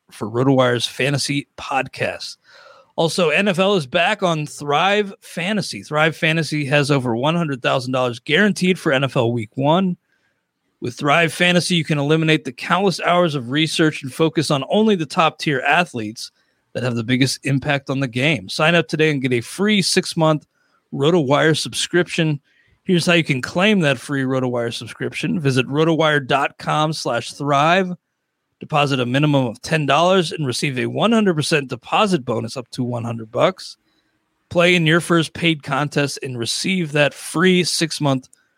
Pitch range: 135-175 Hz